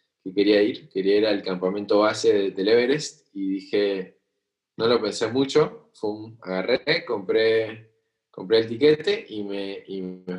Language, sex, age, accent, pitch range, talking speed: Spanish, male, 20-39, Argentinian, 100-115 Hz, 150 wpm